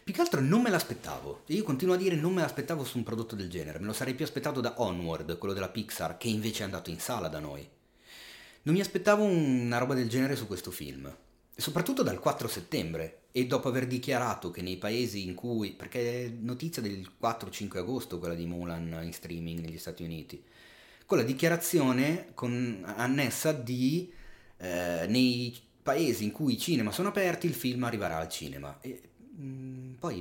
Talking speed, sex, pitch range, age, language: 195 wpm, male, 90-135 Hz, 30-49, Italian